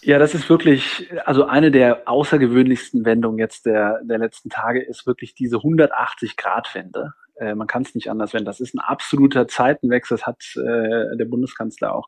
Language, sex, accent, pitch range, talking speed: German, male, German, 120-145 Hz, 180 wpm